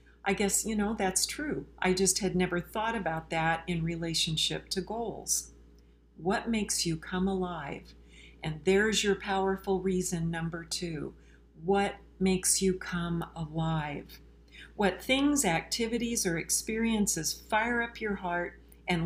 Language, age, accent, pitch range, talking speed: English, 50-69, American, 165-195 Hz, 140 wpm